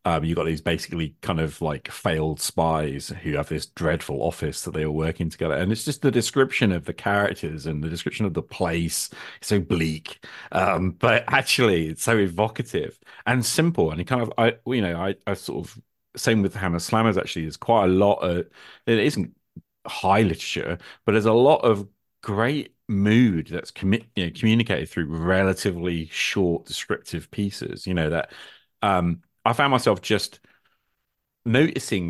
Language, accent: English, British